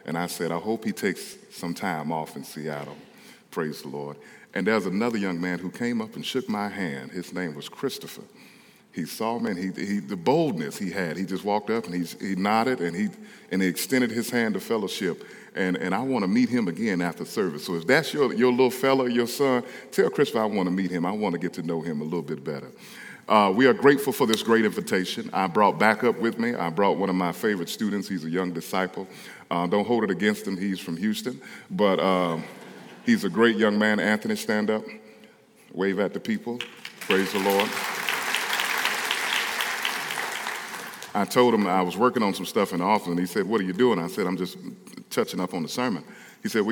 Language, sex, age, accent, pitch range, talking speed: English, male, 40-59, American, 90-120 Hz, 225 wpm